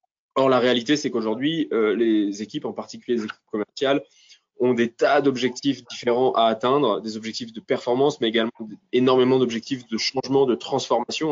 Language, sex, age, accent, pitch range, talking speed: French, male, 20-39, French, 110-130 Hz, 170 wpm